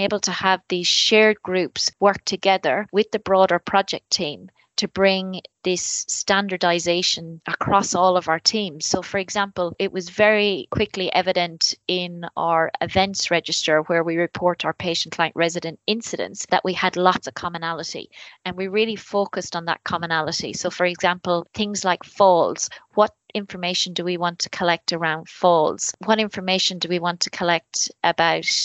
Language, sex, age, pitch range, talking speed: English, female, 30-49, 170-195 Hz, 160 wpm